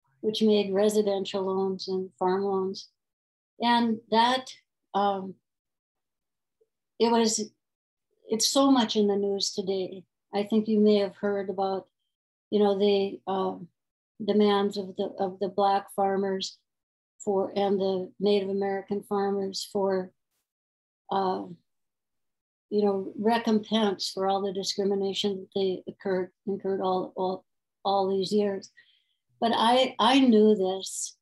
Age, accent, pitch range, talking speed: 60-79, American, 190-215 Hz, 125 wpm